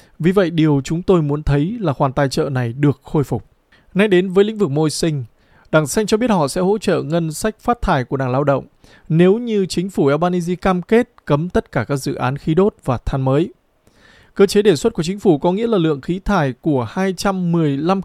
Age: 20-39